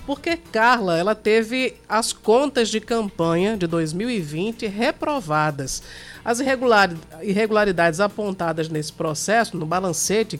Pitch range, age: 180-240 Hz, 50-69